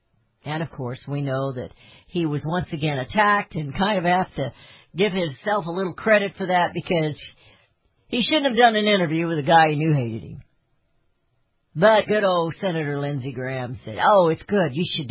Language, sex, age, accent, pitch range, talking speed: English, female, 50-69, American, 125-185 Hz, 195 wpm